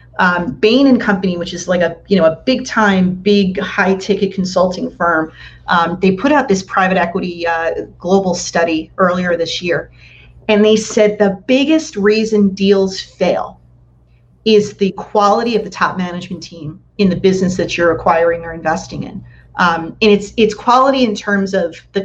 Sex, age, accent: female, 40-59, American